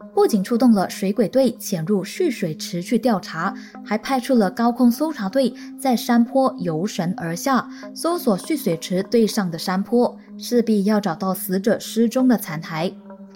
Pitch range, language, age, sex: 185-235 Hz, Chinese, 20-39, female